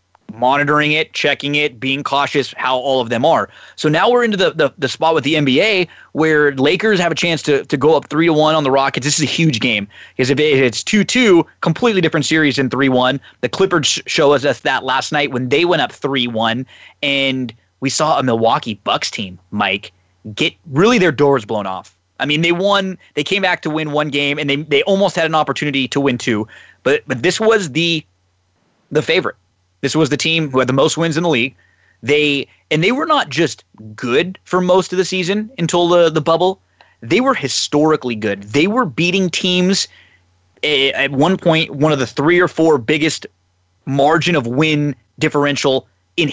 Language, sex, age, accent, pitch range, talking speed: English, male, 20-39, American, 125-165 Hz, 205 wpm